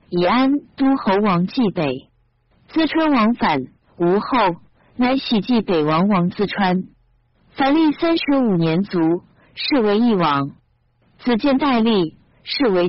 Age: 50-69